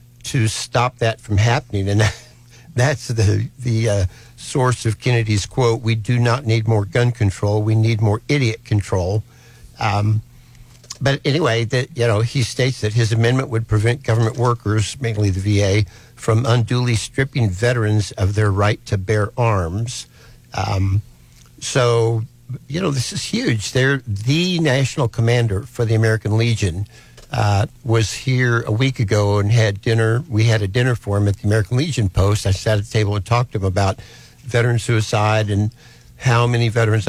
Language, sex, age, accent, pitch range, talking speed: English, male, 60-79, American, 105-120 Hz, 170 wpm